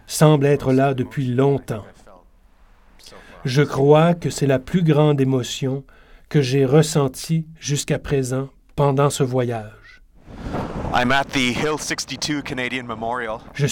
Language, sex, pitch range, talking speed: French, male, 125-145 Hz, 95 wpm